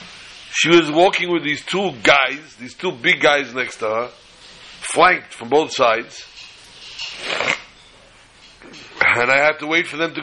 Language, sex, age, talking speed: English, male, 60-79, 155 wpm